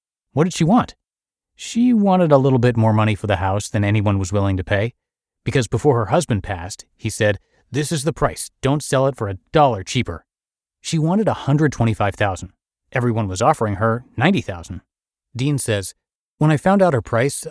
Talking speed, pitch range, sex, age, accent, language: 185 wpm, 105-150 Hz, male, 30-49, American, English